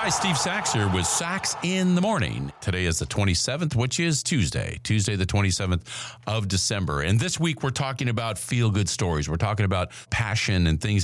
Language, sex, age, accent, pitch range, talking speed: English, male, 50-69, American, 90-125 Hz, 190 wpm